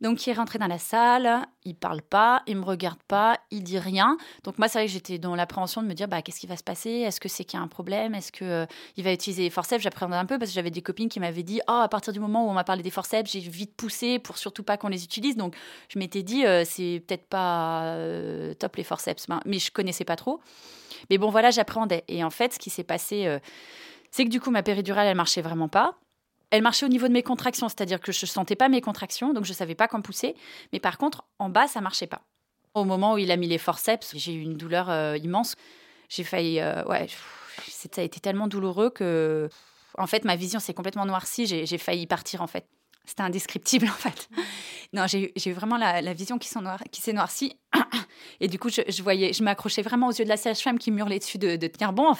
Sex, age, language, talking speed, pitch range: female, 30-49, French, 270 wpm, 180-230 Hz